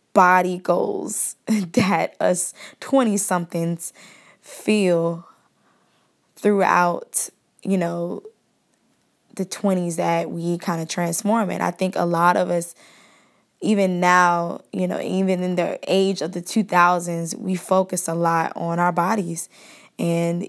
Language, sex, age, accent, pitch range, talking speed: English, female, 10-29, American, 170-195 Hz, 125 wpm